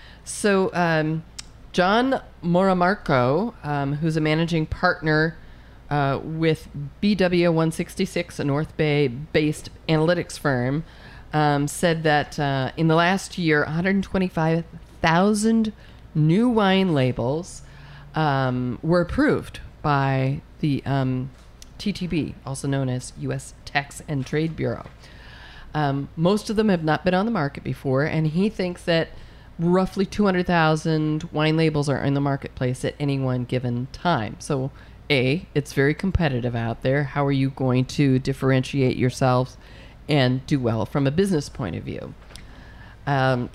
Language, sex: English, female